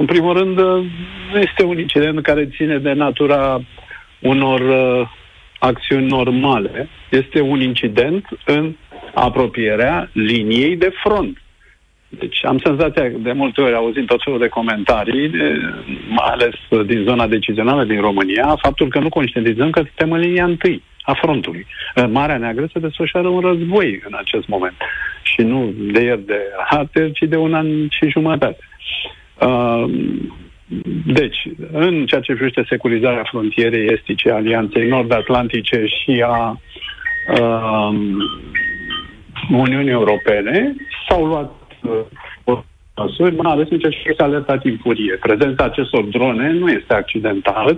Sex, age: male, 50-69